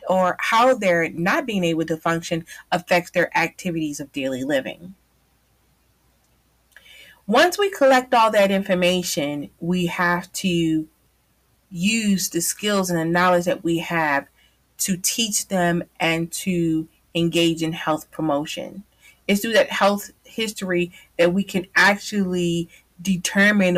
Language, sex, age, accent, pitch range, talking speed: English, female, 30-49, American, 165-195 Hz, 130 wpm